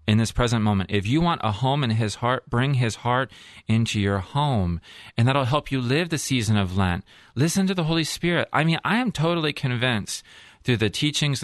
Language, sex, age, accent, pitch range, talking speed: English, male, 30-49, American, 105-150 Hz, 215 wpm